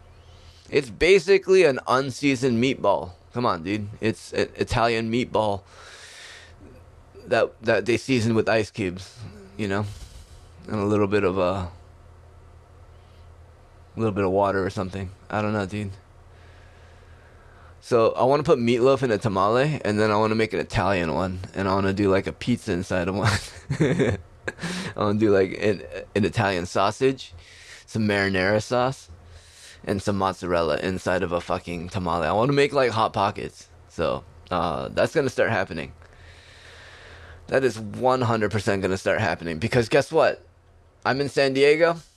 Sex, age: male, 20-39